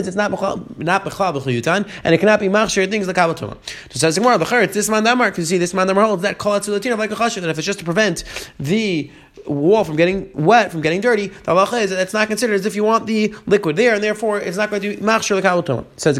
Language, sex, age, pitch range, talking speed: English, male, 30-49, 160-210 Hz, 250 wpm